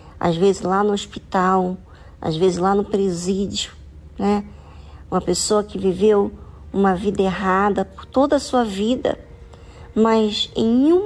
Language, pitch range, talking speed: Portuguese, 180-245 Hz, 140 wpm